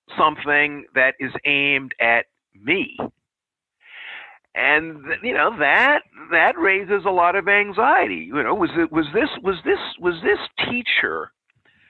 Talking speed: 135 wpm